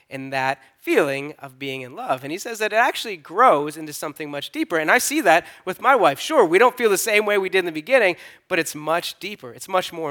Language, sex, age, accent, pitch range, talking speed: English, male, 20-39, American, 140-205 Hz, 260 wpm